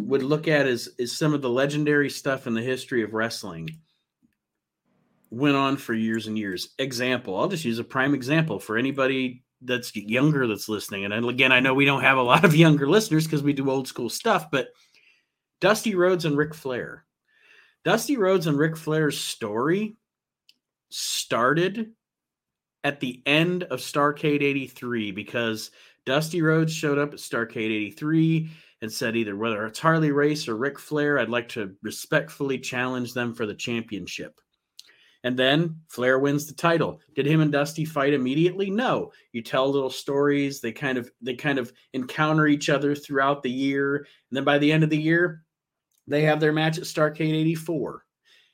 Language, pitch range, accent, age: English, 125-155 Hz, American, 30-49